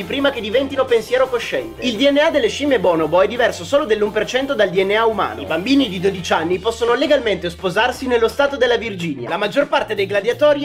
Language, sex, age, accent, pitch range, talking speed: Italian, male, 30-49, native, 210-280 Hz, 190 wpm